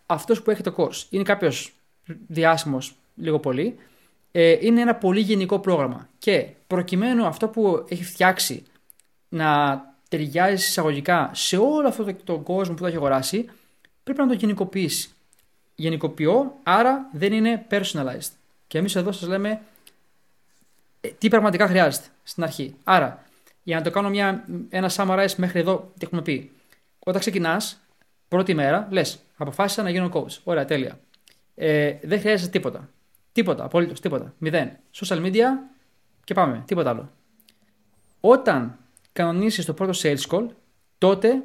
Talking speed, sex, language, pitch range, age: 145 wpm, male, Greek, 155-200 Hz, 20-39